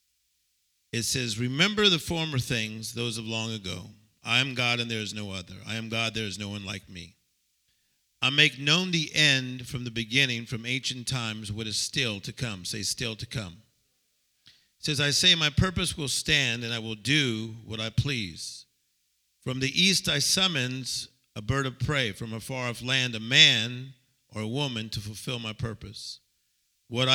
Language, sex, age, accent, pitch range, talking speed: English, male, 50-69, American, 110-135 Hz, 190 wpm